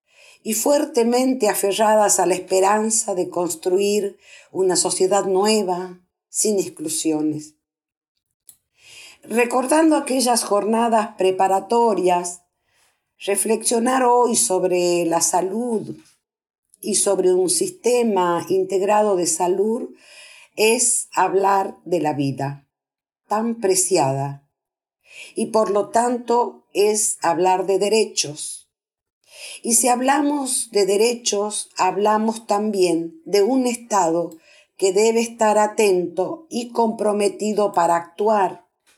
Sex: female